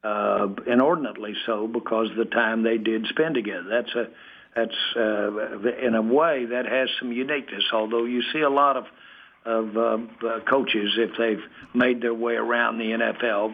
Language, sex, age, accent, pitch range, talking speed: English, male, 60-79, American, 110-125 Hz, 175 wpm